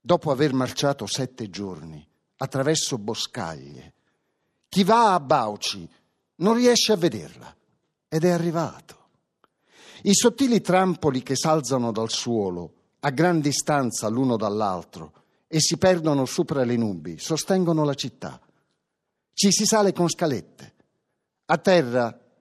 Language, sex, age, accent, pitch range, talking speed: Italian, male, 50-69, native, 120-175 Hz, 125 wpm